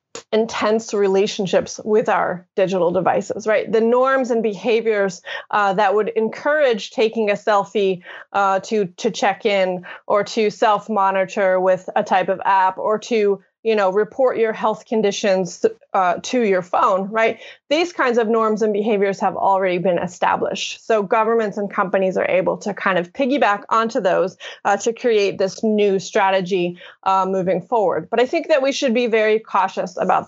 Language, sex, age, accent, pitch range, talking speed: English, female, 30-49, American, 195-235 Hz, 170 wpm